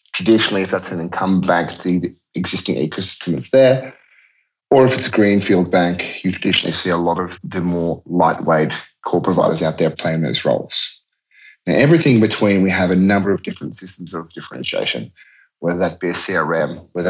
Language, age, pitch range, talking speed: English, 30-49, 85-105 Hz, 185 wpm